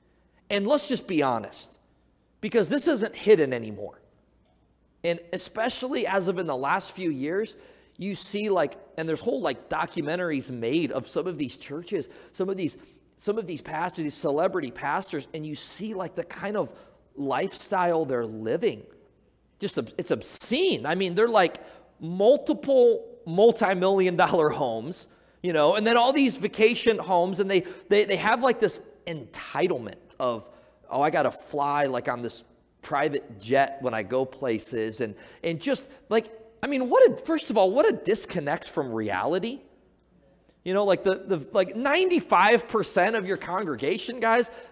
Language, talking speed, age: English, 165 wpm, 30-49